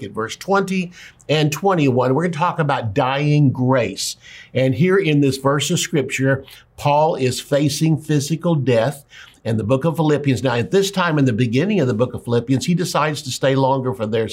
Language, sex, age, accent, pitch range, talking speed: English, male, 60-79, American, 125-155 Hz, 200 wpm